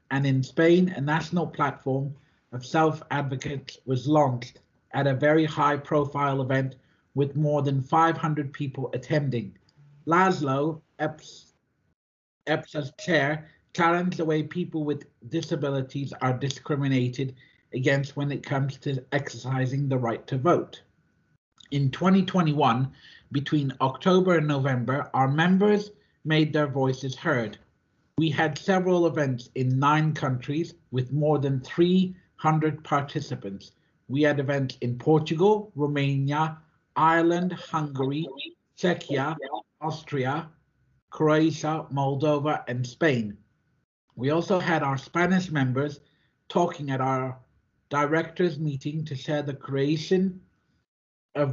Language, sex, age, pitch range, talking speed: English, male, 50-69, 135-160 Hz, 110 wpm